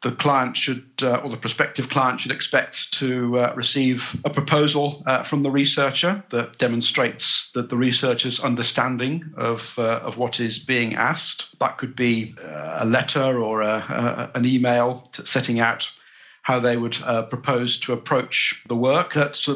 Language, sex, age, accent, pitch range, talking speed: English, male, 50-69, British, 115-135 Hz, 170 wpm